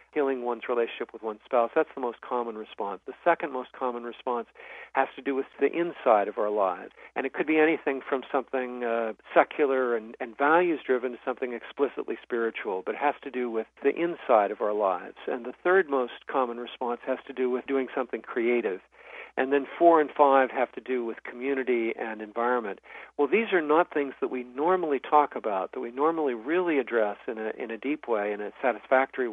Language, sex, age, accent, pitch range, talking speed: English, male, 50-69, American, 115-140 Hz, 205 wpm